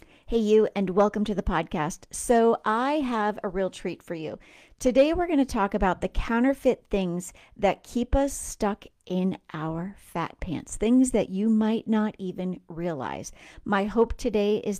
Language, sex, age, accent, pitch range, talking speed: English, female, 40-59, American, 190-245 Hz, 175 wpm